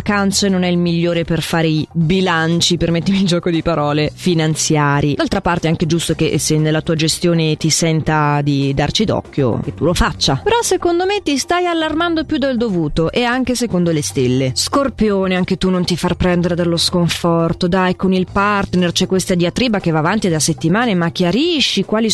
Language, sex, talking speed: Italian, female, 200 wpm